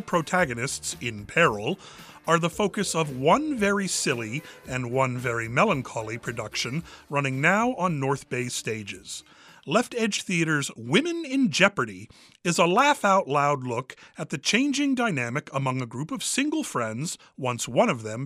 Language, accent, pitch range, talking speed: English, American, 125-200 Hz, 155 wpm